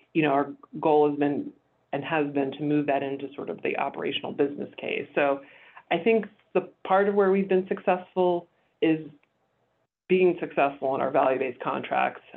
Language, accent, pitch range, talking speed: English, American, 145-180 Hz, 175 wpm